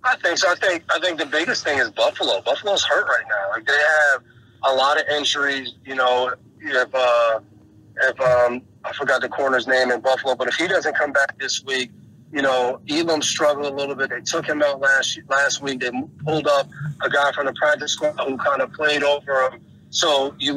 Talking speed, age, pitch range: 220 wpm, 30-49, 135-155 Hz